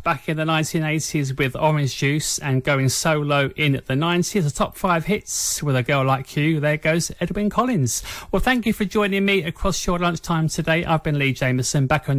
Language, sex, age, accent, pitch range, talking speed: English, male, 30-49, British, 140-195 Hz, 205 wpm